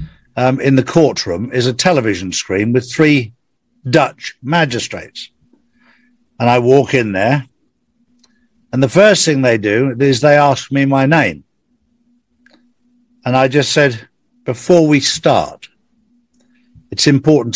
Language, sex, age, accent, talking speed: English, male, 60-79, British, 130 wpm